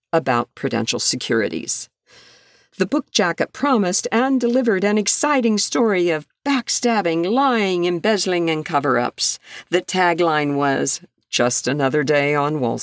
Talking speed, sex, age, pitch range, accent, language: 120 wpm, female, 50-69, 135-200 Hz, American, English